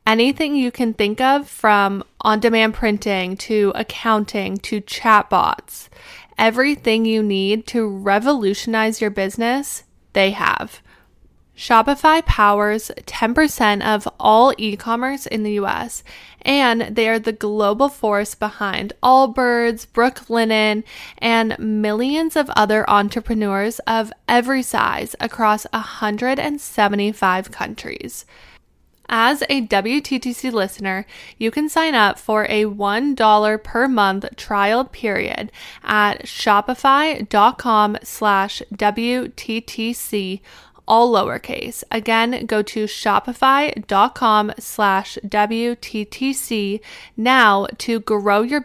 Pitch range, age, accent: 210-250 Hz, 10-29, American